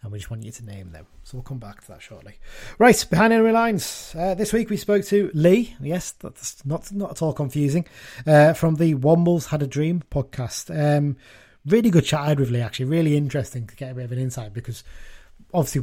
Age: 30-49